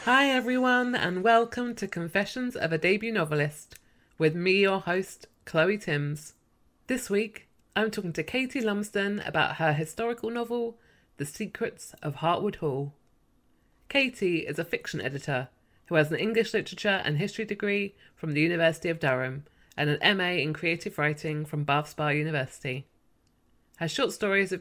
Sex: female